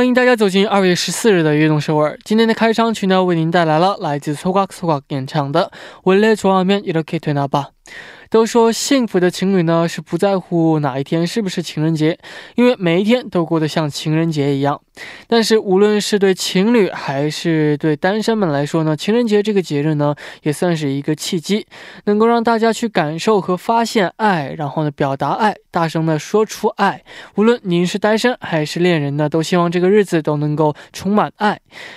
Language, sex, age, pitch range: Korean, male, 20-39, 160-210 Hz